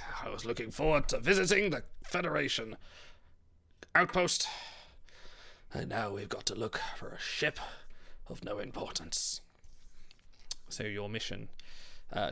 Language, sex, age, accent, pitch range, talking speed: English, male, 30-49, British, 115-155 Hz, 120 wpm